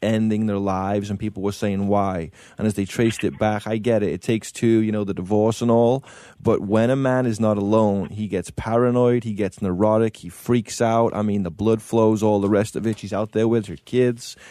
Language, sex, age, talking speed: English, male, 20-39, 240 wpm